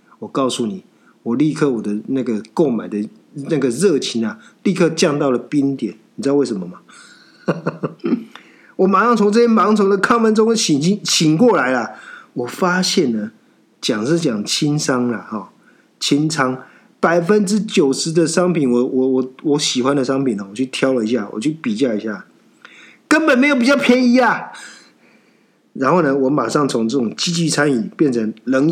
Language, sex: Chinese, male